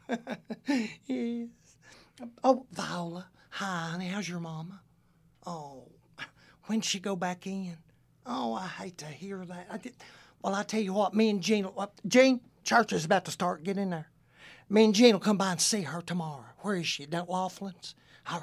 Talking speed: 180 wpm